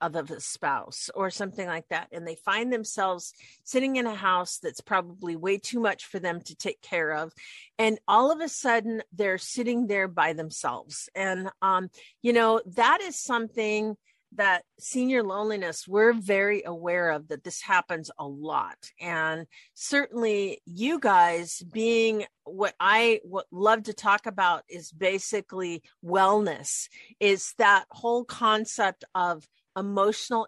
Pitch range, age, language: 185-230 Hz, 50-69, English